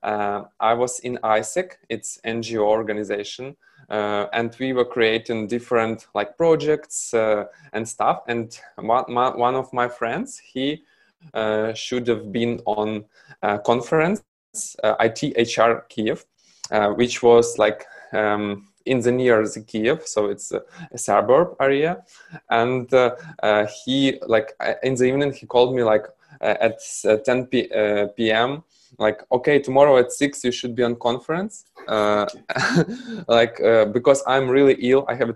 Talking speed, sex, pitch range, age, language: 155 wpm, male, 110-135 Hz, 20-39, English